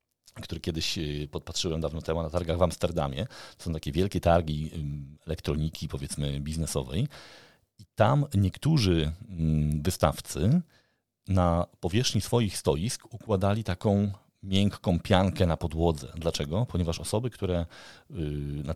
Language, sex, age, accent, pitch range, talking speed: Polish, male, 40-59, native, 85-110 Hz, 115 wpm